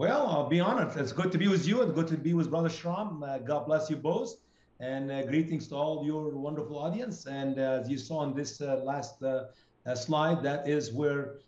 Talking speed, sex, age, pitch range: 235 wpm, male, 50-69, 140-175 Hz